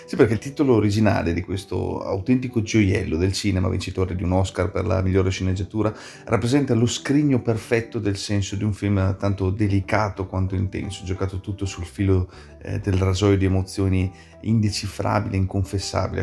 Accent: native